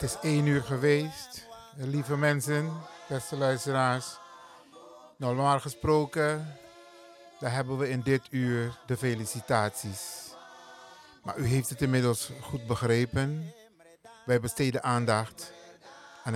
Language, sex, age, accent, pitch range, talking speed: Dutch, male, 50-69, Dutch, 115-140 Hz, 110 wpm